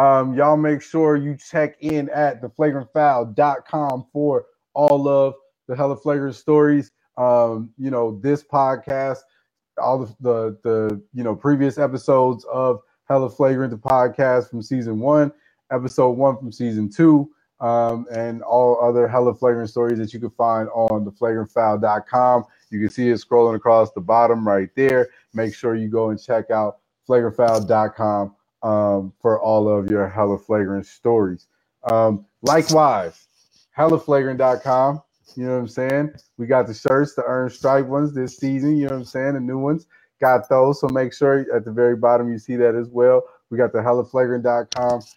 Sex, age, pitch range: male, 20-39, 115-140 Hz